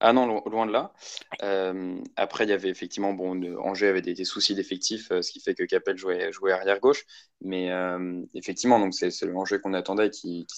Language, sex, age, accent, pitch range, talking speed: French, male, 20-39, French, 90-105 Hz, 215 wpm